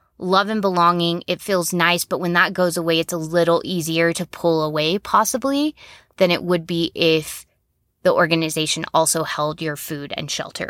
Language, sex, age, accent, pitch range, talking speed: English, female, 20-39, American, 160-200 Hz, 180 wpm